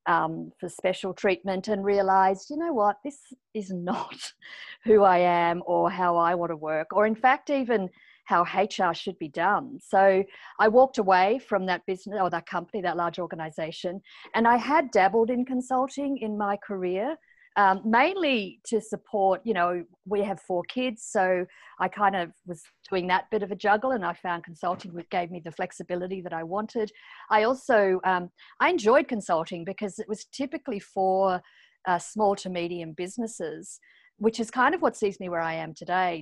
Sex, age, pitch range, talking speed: female, 50-69, 175-220 Hz, 185 wpm